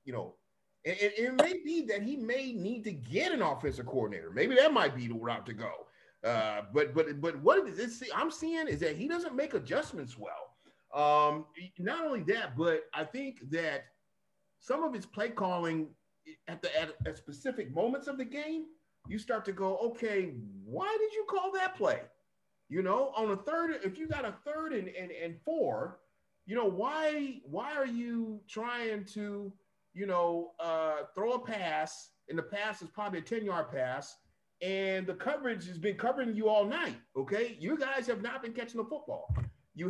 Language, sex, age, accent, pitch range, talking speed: English, male, 40-59, American, 170-245 Hz, 190 wpm